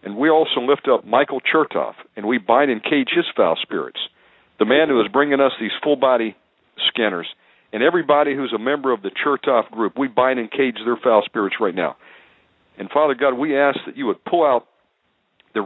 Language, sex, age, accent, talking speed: English, male, 50-69, American, 205 wpm